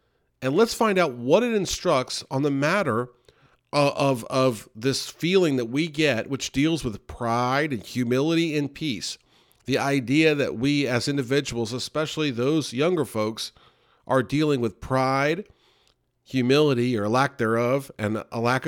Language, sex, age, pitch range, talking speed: English, male, 50-69, 125-165 Hz, 150 wpm